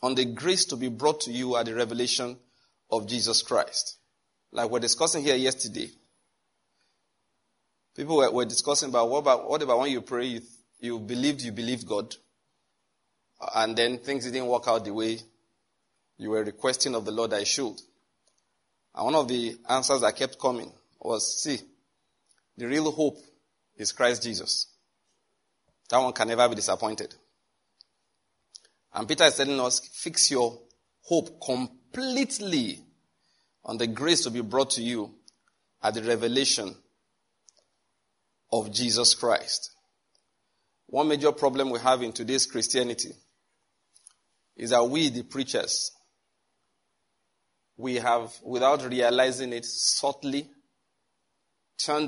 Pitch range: 115-135 Hz